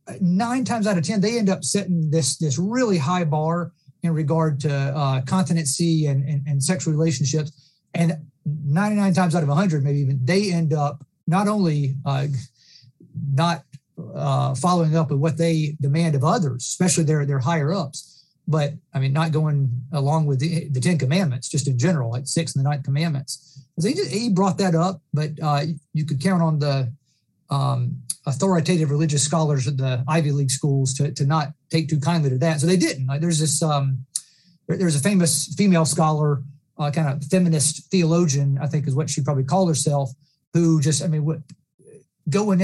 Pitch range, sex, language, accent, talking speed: 140-170 Hz, male, English, American, 190 wpm